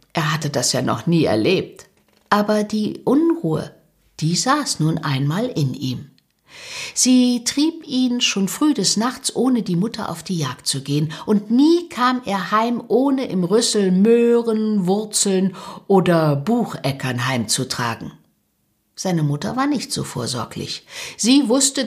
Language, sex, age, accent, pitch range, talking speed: German, female, 60-79, German, 160-235 Hz, 145 wpm